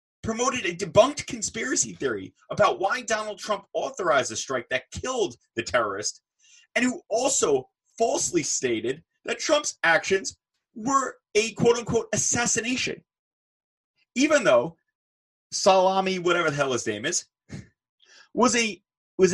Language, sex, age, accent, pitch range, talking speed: English, male, 30-49, American, 180-275 Hz, 125 wpm